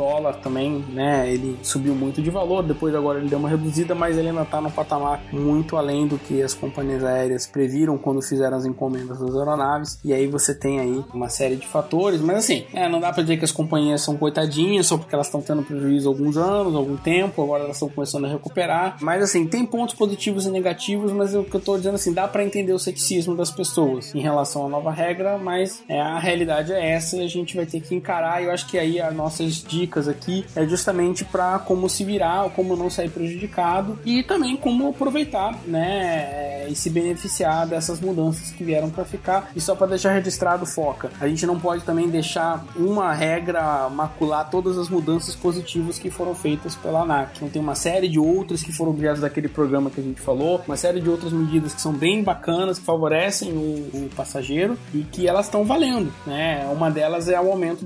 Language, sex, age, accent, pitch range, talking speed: Portuguese, male, 20-39, Brazilian, 145-180 Hz, 220 wpm